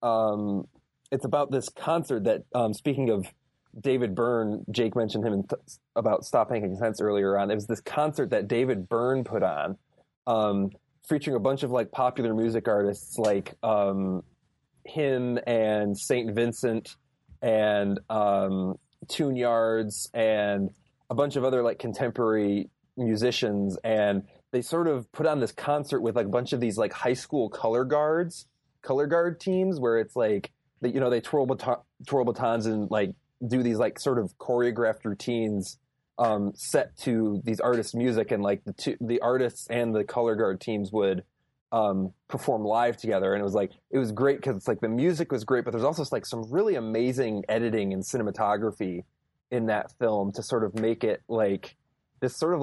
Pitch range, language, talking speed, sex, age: 105-125 Hz, English, 175 wpm, male, 20-39